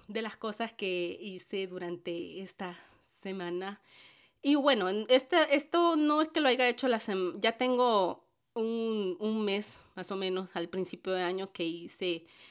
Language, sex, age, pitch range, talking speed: Spanish, female, 30-49, 185-210 Hz, 165 wpm